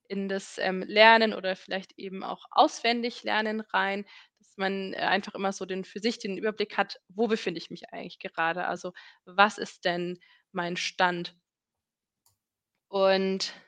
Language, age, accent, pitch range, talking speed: German, 20-39, German, 190-225 Hz, 160 wpm